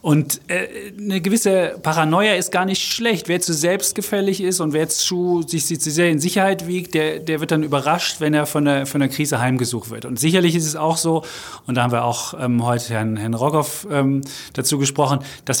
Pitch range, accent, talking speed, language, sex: 135-165 Hz, German, 205 wpm, German, male